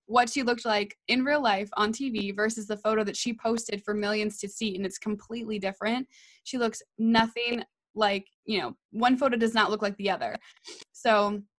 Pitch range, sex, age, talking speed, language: 210-255 Hz, female, 20-39, 195 wpm, English